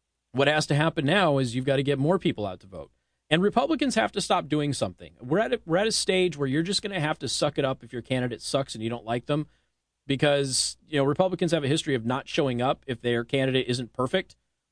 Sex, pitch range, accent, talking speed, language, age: male, 130-175 Hz, American, 260 wpm, English, 30-49